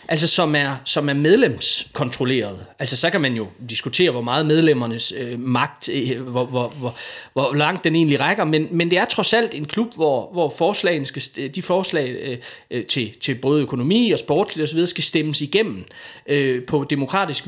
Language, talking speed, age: Danish, 180 wpm, 30-49